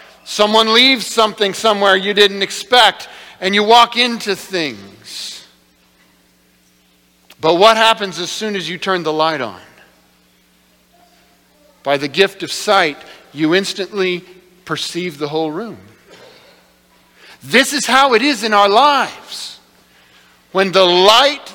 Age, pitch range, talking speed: 50-69, 155-235 Hz, 125 wpm